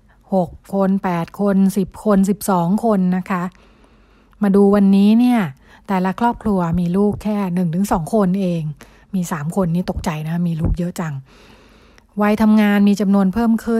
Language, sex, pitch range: Thai, female, 180-210 Hz